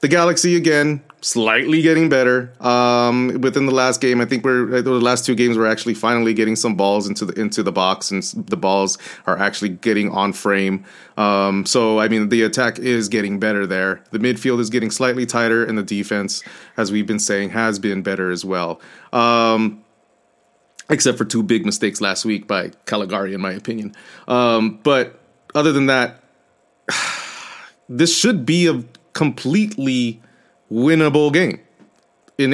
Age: 30-49